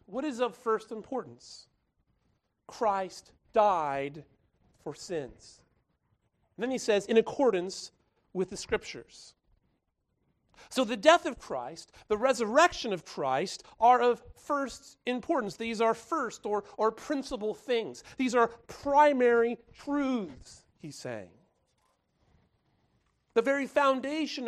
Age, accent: 40-59, American